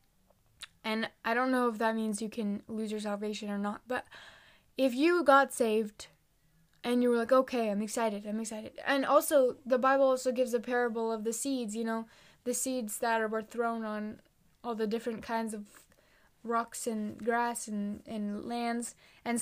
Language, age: English, 10-29